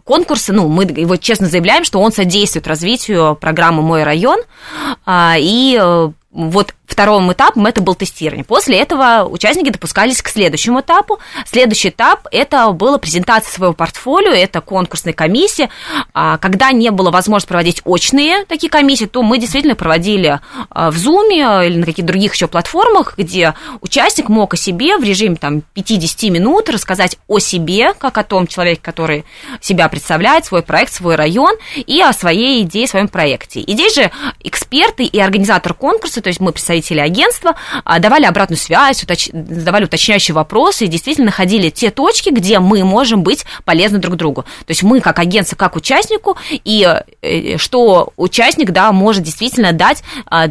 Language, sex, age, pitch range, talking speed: Russian, female, 20-39, 170-245 Hz, 155 wpm